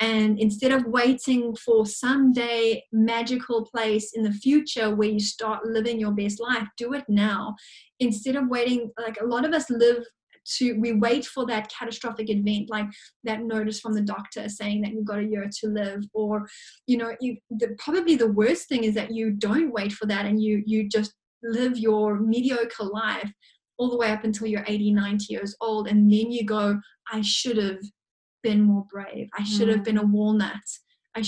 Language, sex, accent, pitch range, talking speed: English, female, Australian, 210-230 Hz, 195 wpm